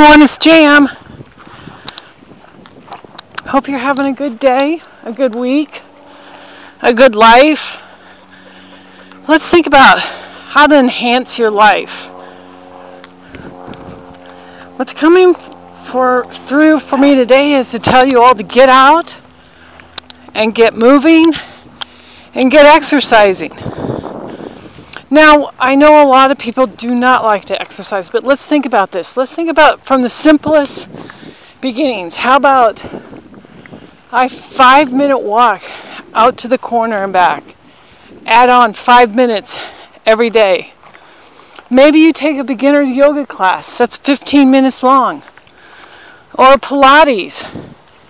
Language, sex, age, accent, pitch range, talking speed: English, female, 40-59, American, 230-290 Hz, 120 wpm